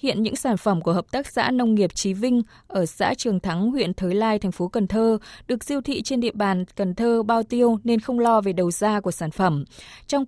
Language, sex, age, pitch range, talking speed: Vietnamese, female, 20-39, 195-245 Hz, 250 wpm